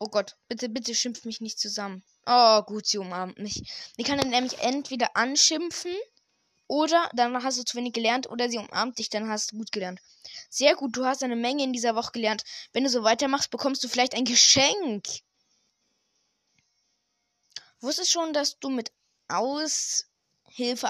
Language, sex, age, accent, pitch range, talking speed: German, female, 20-39, German, 215-265 Hz, 170 wpm